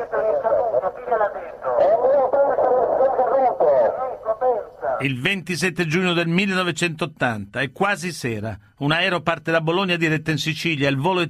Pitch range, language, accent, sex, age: 145-175 Hz, Italian, native, male, 50-69